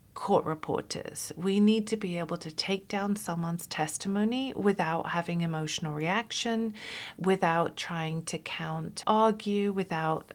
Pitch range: 165-200 Hz